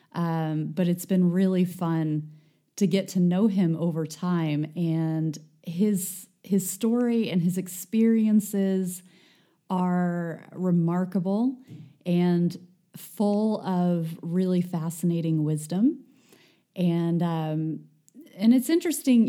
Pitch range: 170-195 Hz